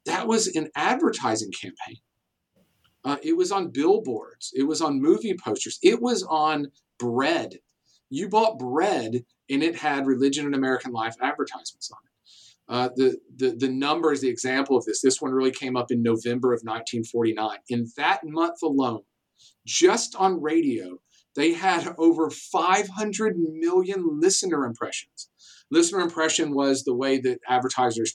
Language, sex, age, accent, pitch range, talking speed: English, male, 40-59, American, 125-170 Hz, 150 wpm